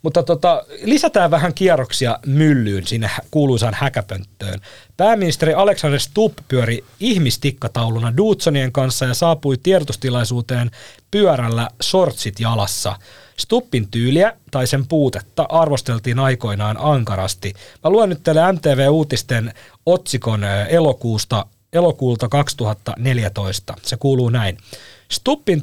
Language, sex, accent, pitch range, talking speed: Finnish, male, native, 115-160 Hz, 105 wpm